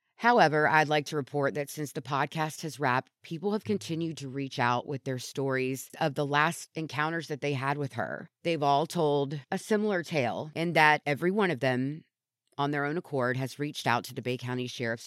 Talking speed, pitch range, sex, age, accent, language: 210 wpm, 125-160 Hz, female, 30-49, American, English